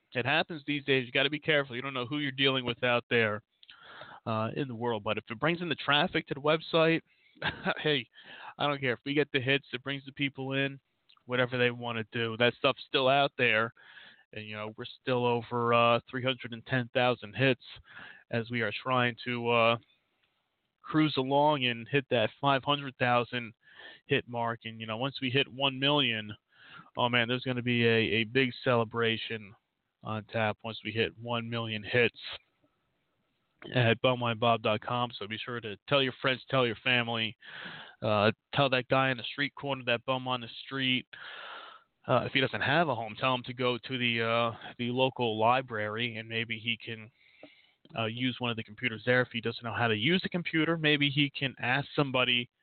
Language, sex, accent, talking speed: English, male, American, 200 wpm